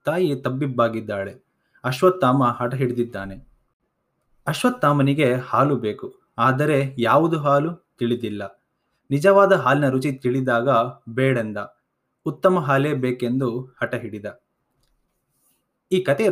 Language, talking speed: Kannada, 90 wpm